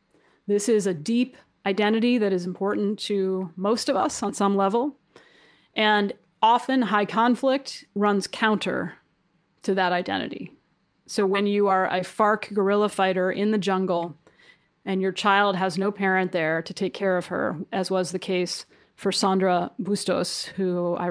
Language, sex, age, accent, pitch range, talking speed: English, female, 30-49, American, 185-205 Hz, 160 wpm